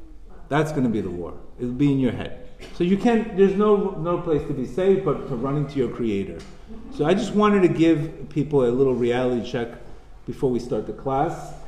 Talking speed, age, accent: 215 wpm, 40-59, American